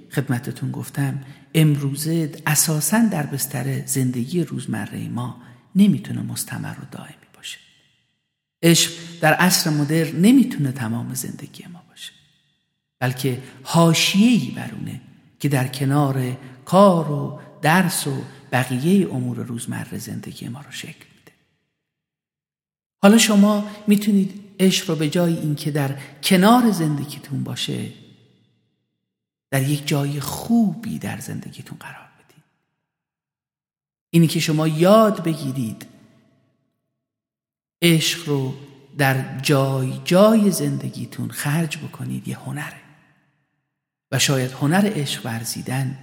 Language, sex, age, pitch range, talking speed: Persian, male, 50-69, 135-175 Hz, 105 wpm